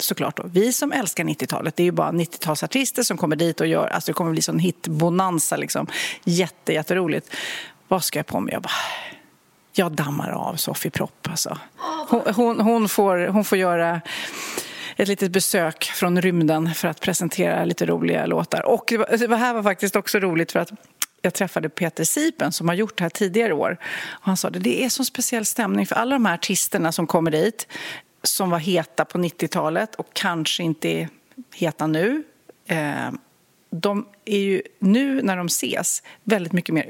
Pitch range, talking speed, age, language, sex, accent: 170-230 Hz, 185 wpm, 40-59, Swedish, female, native